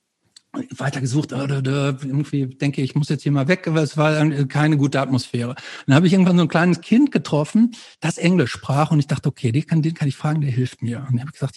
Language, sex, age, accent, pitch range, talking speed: German, male, 60-79, German, 135-175 Hz, 240 wpm